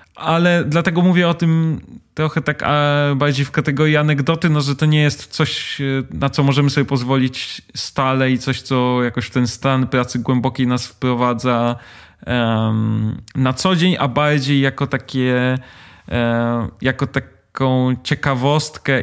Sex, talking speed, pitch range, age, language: male, 145 wpm, 115-145 Hz, 20-39, Polish